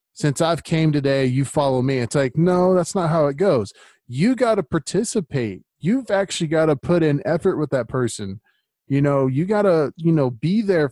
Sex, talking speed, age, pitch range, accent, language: male, 205 wpm, 20-39, 130-170 Hz, American, English